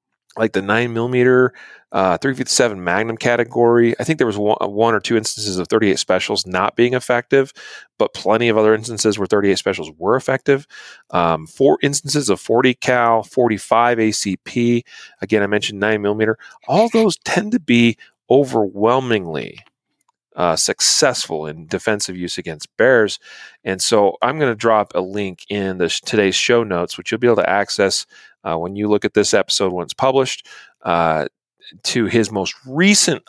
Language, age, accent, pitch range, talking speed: English, 40-59, American, 100-120 Hz, 165 wpm